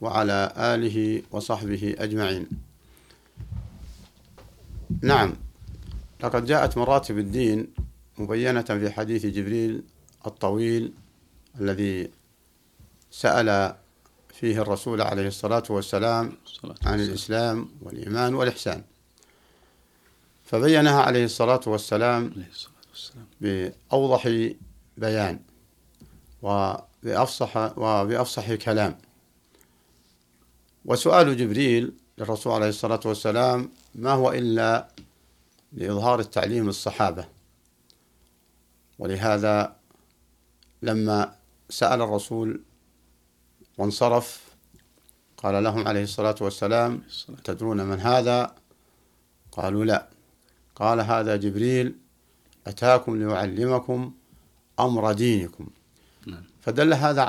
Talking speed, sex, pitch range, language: 70 wpm, male, 95-115 Hz, Arabic